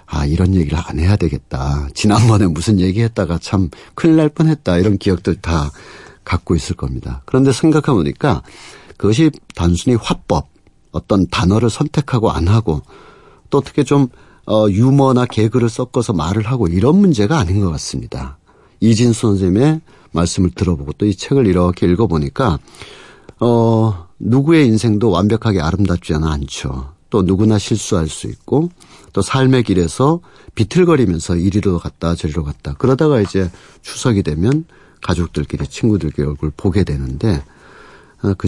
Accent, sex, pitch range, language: native, male, 85-120 Hz, Korean